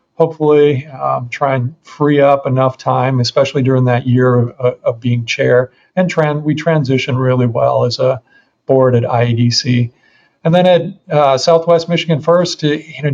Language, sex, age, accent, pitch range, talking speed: English, male, 40-59, American, 125-150 Hz, 165 wpm